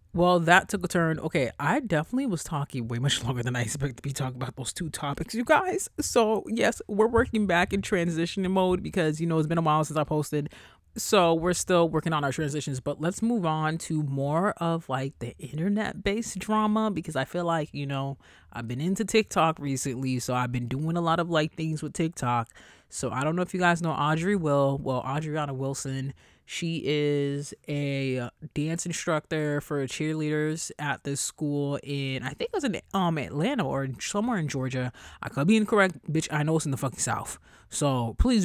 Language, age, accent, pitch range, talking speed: English, 30-49, American, 135-175 Hz, 210 wpm